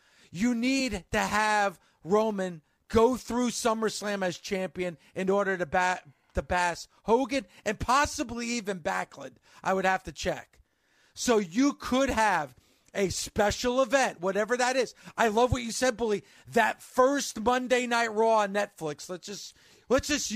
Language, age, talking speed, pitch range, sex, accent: English, 40-59, 155 wpm, 185-225 Hz, male, American